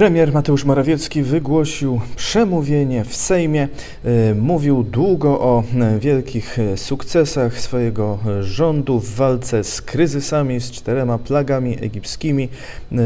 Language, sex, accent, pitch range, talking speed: Polish, male, native, 110-140 Hz, 100 wpm